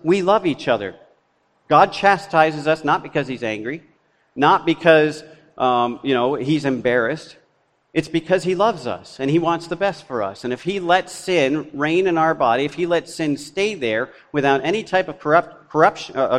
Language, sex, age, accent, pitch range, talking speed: English, male, 50-69, American, 145-185 Hz, 185 wpm